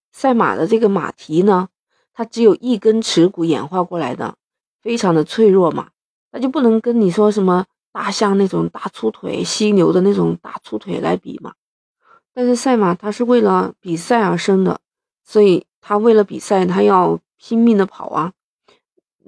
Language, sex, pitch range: Chinese, female, 185-235 Hz